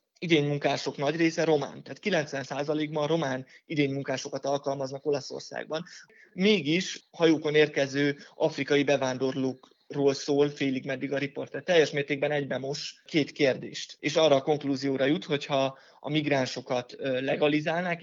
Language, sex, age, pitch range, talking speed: Hungarian, male, 20-39, 135-150 Hz, 115 wpm